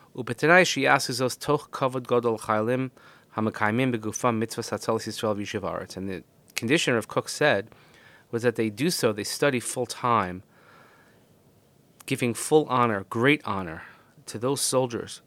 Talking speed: 95 wpm